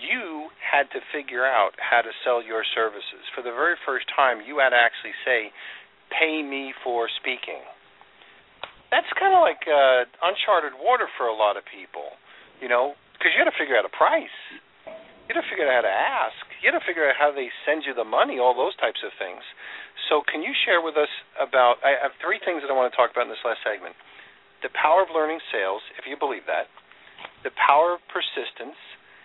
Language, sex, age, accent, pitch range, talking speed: English, male, 40-59, American, 120-155 Hz, 215 wpm